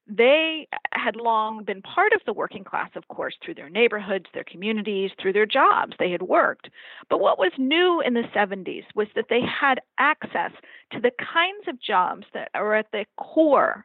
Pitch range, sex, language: 200-285 Hz, female, English